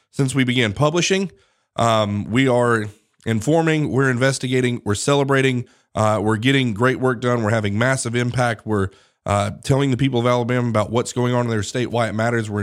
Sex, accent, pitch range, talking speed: male, American, 110-130 Hz, 190 wpm